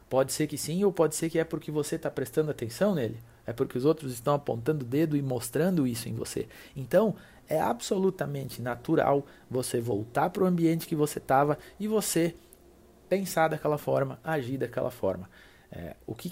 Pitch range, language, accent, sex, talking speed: 120-165 Hz, Portuguese, Brazilian, male, 185 wpm